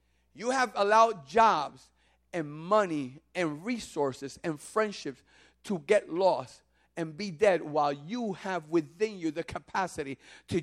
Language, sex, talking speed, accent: English, male, 135 wpm, American